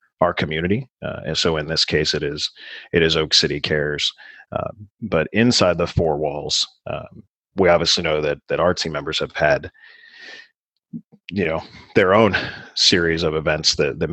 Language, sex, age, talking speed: English, male, 40-59, 170 wpm